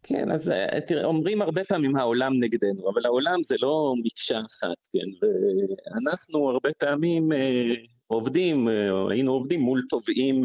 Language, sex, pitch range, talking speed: Hebrew, male, 105-145 Hz, 145 wpm